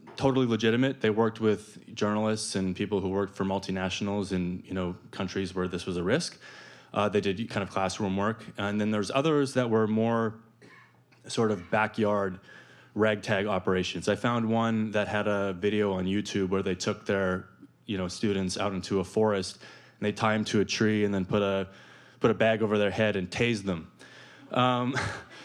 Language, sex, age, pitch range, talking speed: English, male, 20-39, 100-125 Hz, 190 wpm